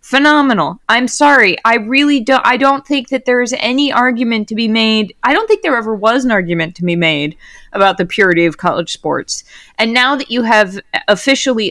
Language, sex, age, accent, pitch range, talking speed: English, female, 20-39, American, 180-250 Hz, 200 wpm